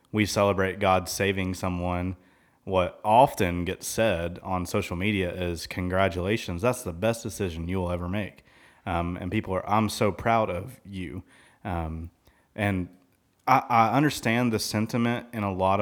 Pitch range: 90-110 Hz